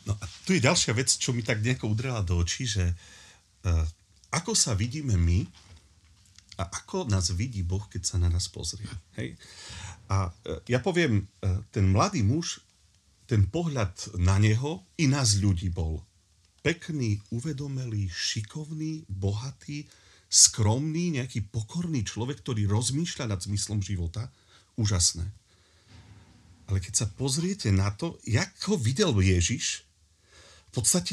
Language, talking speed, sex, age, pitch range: Slovak, 130 wpm, male, 40-59, 95-145 Hz